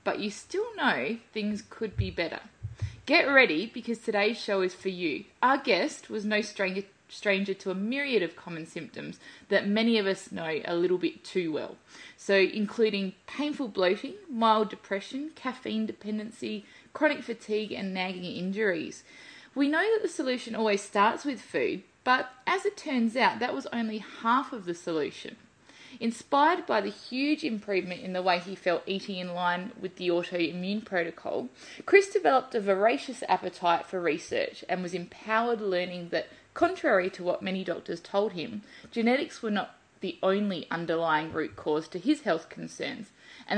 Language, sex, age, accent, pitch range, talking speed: English, female, 20-39, Australian, 180-255 Hz, 165 wpm